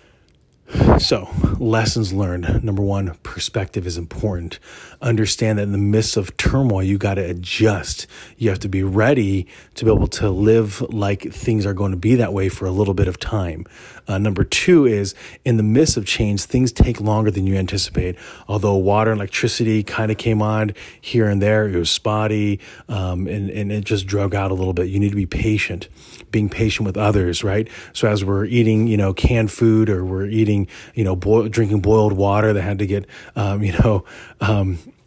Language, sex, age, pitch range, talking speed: English, male, 30-49, 100-110 Hz, 200 wpm